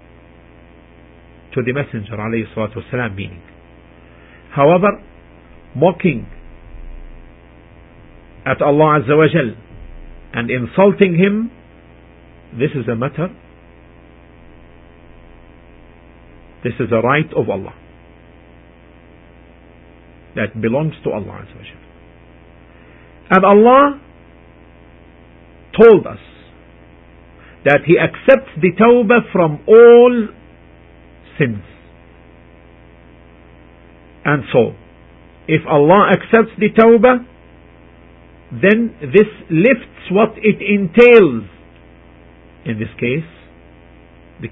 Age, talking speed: 50-69, 75 wpm